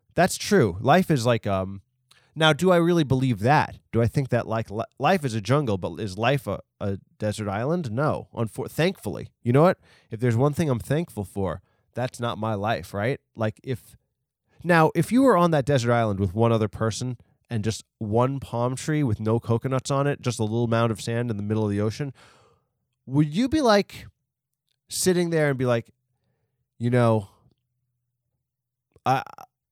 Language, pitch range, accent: English, 110-145 Hz, American